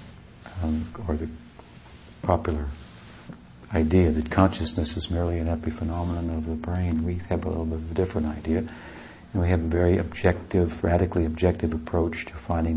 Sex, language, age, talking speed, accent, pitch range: male, English, 60-79, 160 wpm, American, 80-95 Hz